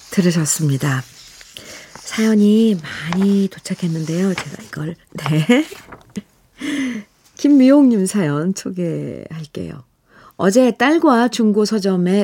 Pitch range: 170-230 Hz